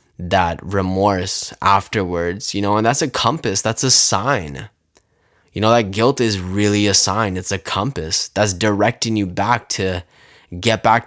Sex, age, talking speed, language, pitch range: male, 10-29, 165 wpm, English, 90-105 Hz